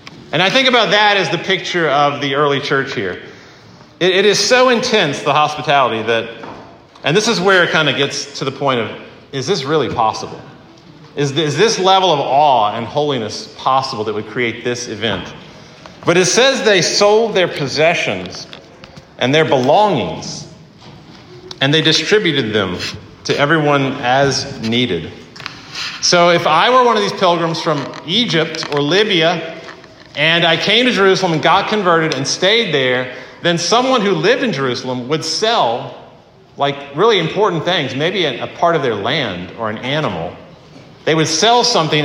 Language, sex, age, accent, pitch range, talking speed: English, male, 40-59, American, 135-180 Hz, 170 wpm